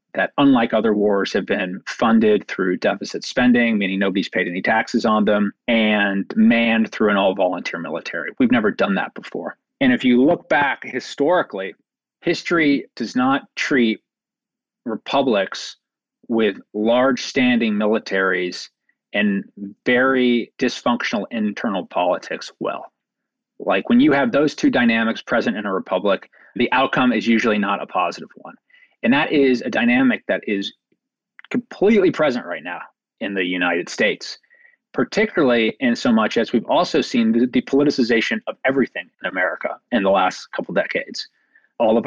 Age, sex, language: 40-59, male, English